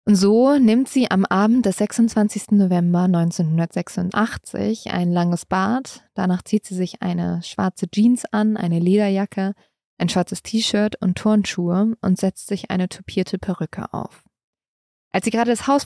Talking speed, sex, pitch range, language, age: 150 wpm, female, 175-200 Hz, German, 20-39